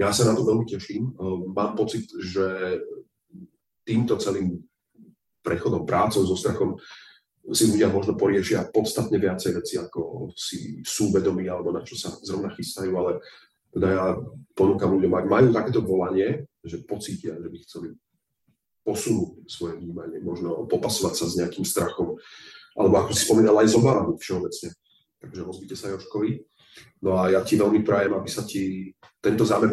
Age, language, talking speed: 30-49, Slovak, 155 wpm